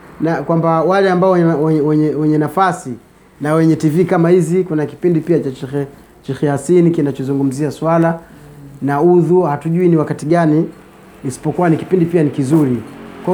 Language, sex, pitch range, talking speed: Swahili, male, 150-190 Hz, 155 wpm